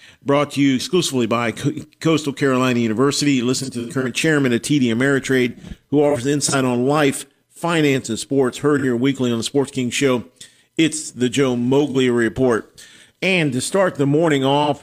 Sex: male